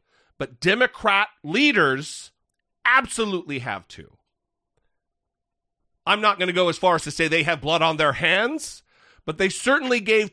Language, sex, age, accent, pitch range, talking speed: English, male, 40-59, American, 165-225 Hz, 150 wpm